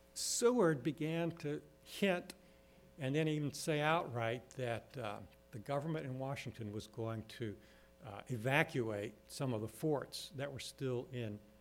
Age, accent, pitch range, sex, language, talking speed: 70-89, American, 110-150 Hz, male, English, 145 wpm